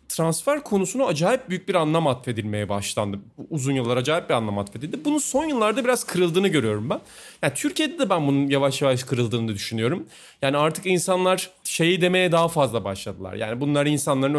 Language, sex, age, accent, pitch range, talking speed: Turkish, male, 30-49, native, 130-185 Hz, 170 wpm